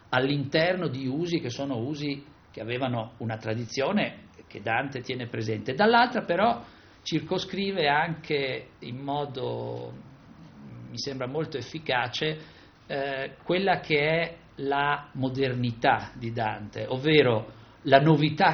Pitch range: 115-160 Hz